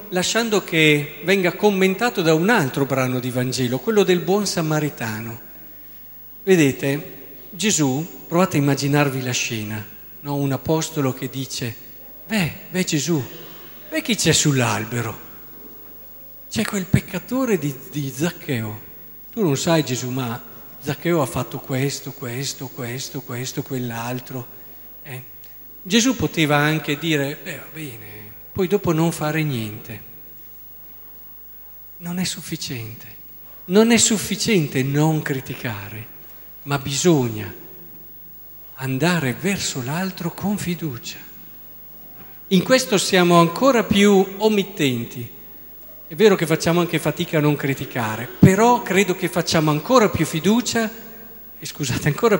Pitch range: 130-190 Hz